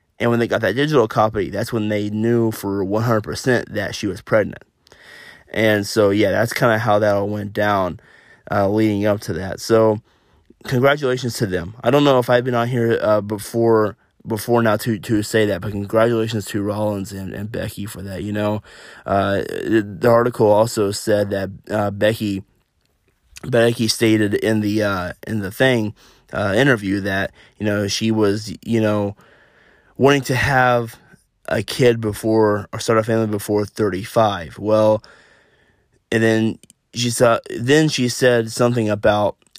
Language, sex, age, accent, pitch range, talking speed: English, male, 20-39, American, 105-120 Hz, 170 wpm